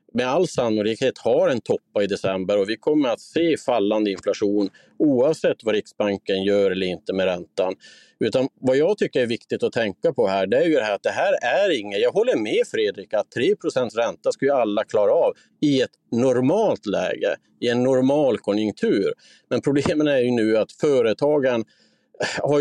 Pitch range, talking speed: 110-175 Hz, 190 wpm